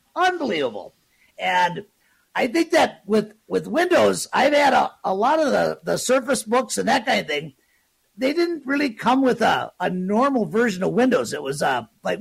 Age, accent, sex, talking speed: 50-69, American, male, 185 wpm